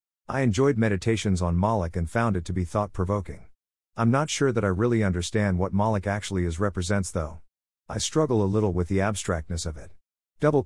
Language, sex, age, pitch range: English, male, 50-69, 90-115 Hz